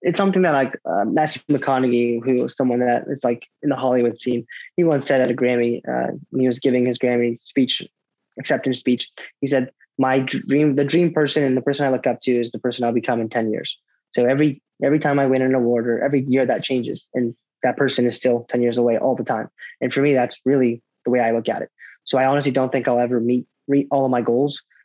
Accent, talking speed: American, 245 wpm